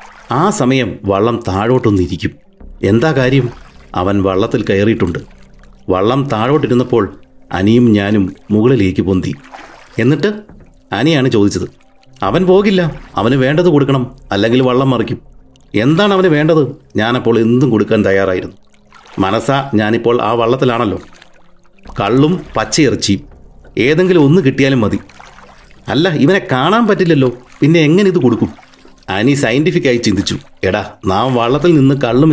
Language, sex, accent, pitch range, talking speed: Malayalam, male, native, 100-135 Hz, 110 wpm